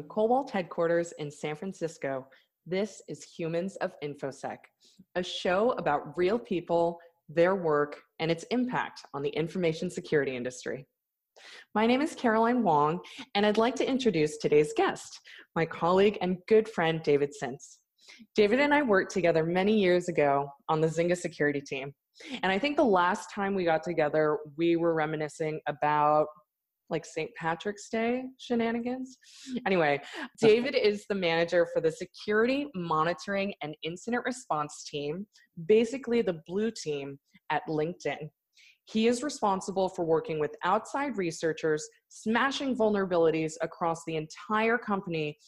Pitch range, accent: 155-215 Hz, American